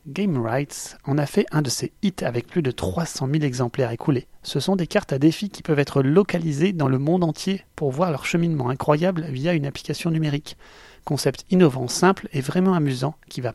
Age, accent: 30-49, French